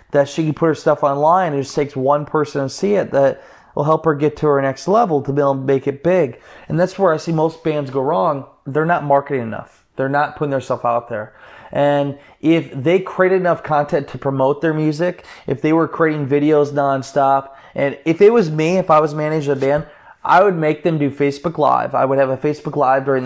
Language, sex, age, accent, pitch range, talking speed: English, male, 20-39, American, 140-165 Hz, 235 wpm